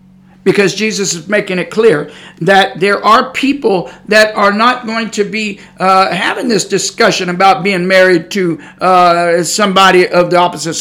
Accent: American